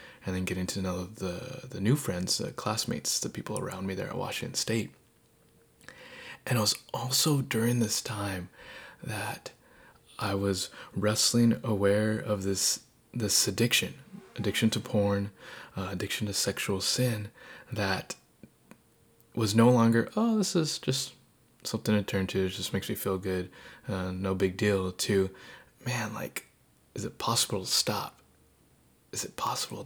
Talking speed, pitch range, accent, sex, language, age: 155 wpm, 95-115 Hz, American, male, English, 20-39